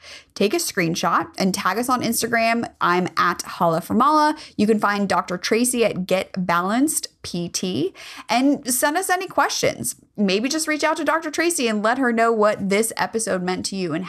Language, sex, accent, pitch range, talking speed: English, female, American, 190-265 Hz, 185 wpm